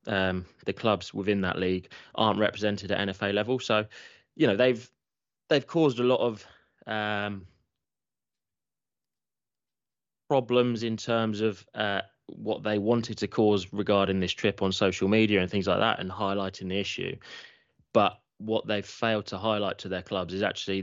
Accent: British